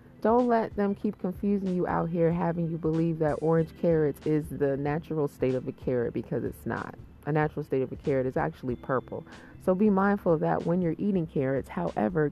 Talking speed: 210 wpm